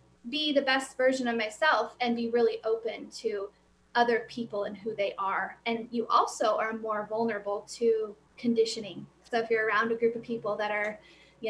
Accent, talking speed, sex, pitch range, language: American, 190 wpm, female, 225-270 Hz, English